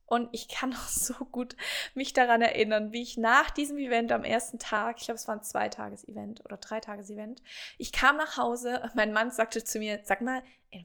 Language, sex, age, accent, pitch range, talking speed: German, female, 20-39, German, 220-265 Hz, 210 wpm